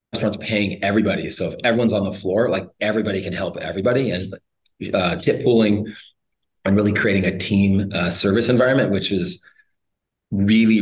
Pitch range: 90-110 Hz